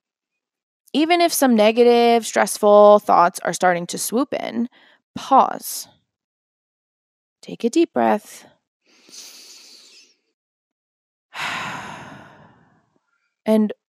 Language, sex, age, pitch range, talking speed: English, female, 20-39, 195-245 Hz, 75 wpm